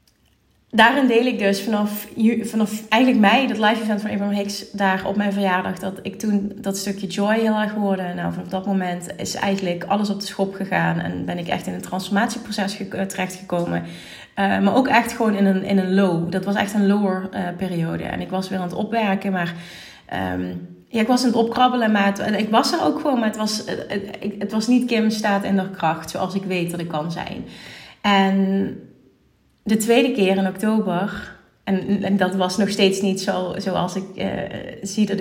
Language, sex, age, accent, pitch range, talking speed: Dutch, female, 30-49, Dutch, 190-215 Hz, 215 wpm